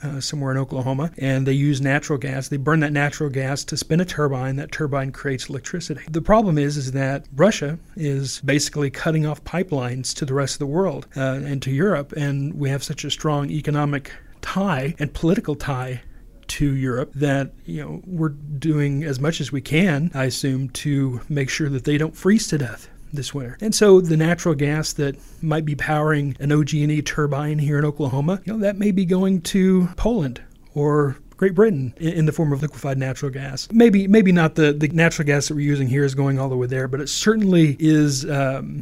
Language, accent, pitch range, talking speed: English, American, 140-160 Hz, 205 wpm